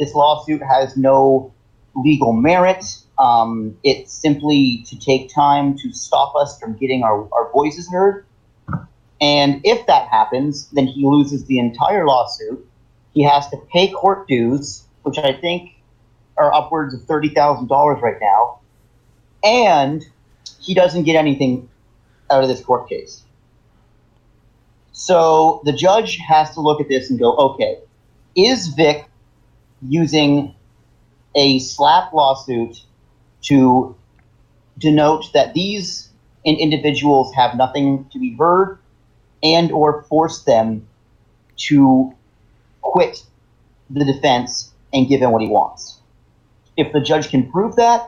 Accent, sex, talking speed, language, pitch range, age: American, male, 125 wpm, English, 120-150 Hz, 40-59